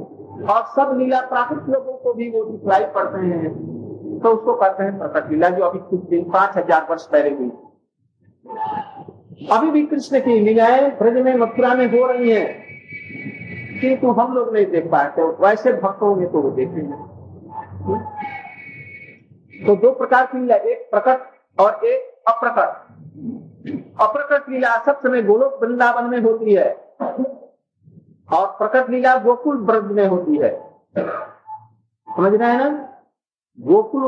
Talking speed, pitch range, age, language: 125 wpm, 195-265 Hz, 50-69, Hindi